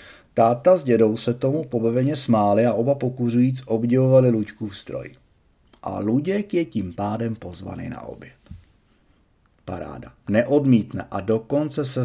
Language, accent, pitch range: Czech, native, 105-135 Hz